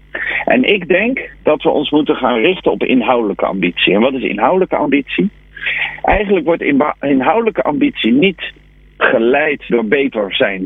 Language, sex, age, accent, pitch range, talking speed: Dutch, male, 50-69, Dutch, 150-210 Hz, 150 wpm